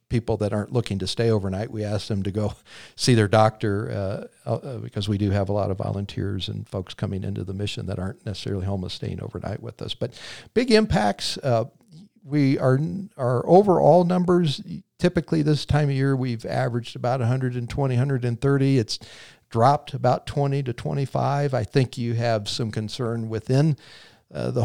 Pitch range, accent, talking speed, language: 110-140 Hz, American, 180 wpm, English